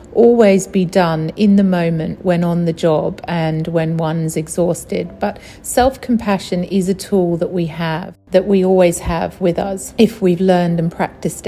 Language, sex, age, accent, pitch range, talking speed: English, female, 40-59, British, 165-200 Hz, 175 wpm